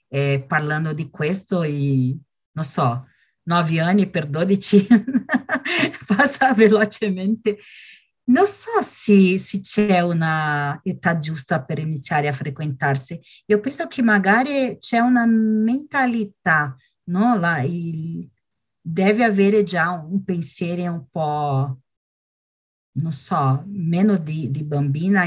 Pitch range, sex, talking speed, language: 145-210 Hz, female, 115 wpm, Portuguese